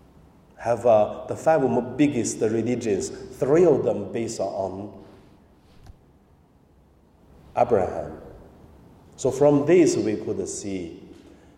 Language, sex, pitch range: Chinese, male, 95-145 Hz